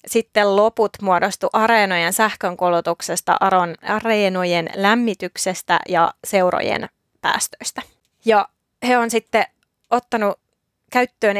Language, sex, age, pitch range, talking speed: Finnish, female, 20-39, 180-225 Hz, 80 wpm